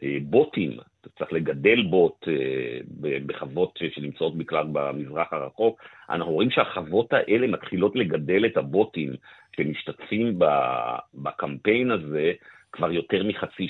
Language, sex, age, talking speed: Hebrew, male, 50-69, 105 wpm